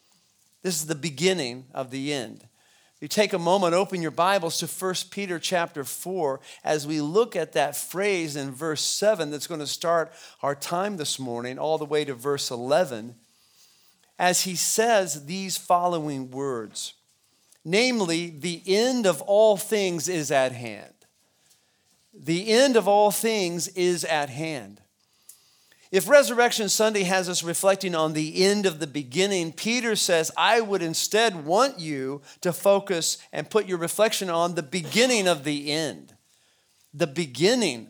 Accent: American